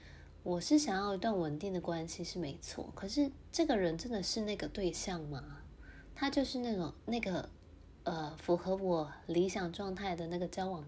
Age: 20-39